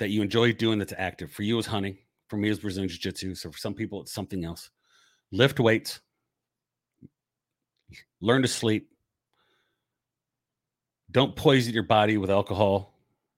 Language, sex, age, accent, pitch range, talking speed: English, male, 40-59, American, 100-120 Hz, 150 wpm